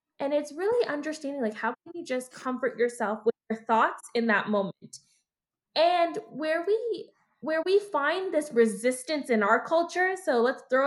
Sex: female